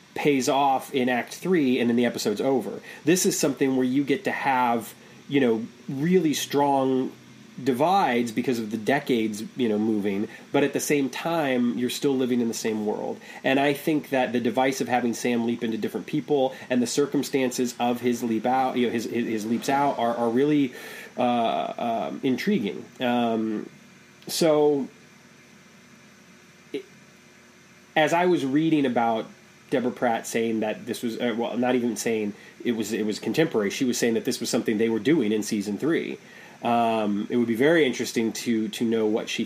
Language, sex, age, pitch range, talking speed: English, male, 30-49, 115-145 Hz, 185 wpm